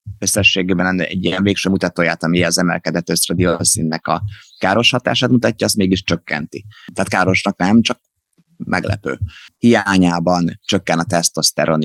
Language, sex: Hungarian, male